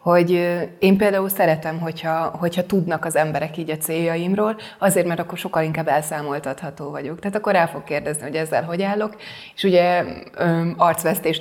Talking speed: 165 wpm